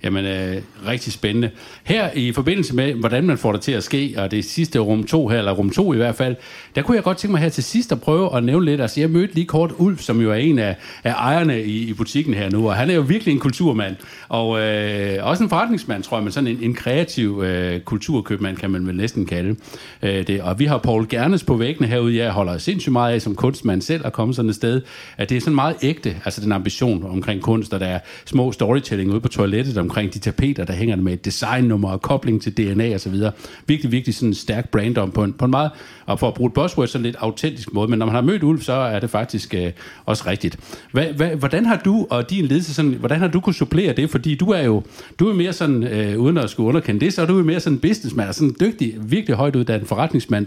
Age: 60-79